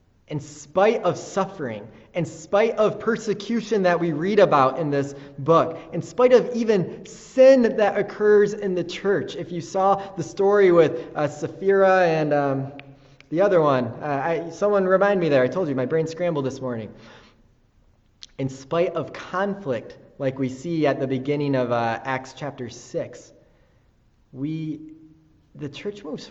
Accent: American